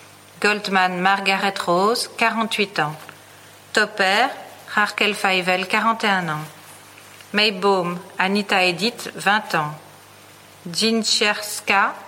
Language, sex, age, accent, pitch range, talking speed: French, female, 40-59, French, 160-210 Hz, 80 wpm